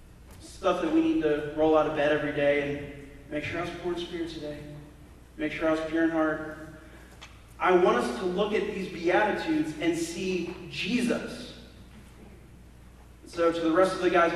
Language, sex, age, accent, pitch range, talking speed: English, male, 30-49, American, 155-210 Hz, 190 wpm